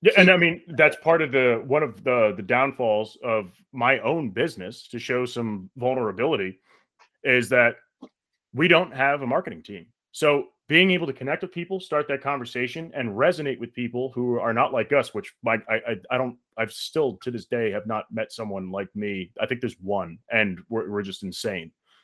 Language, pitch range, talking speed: English, 120-165 Hz, 200 wpm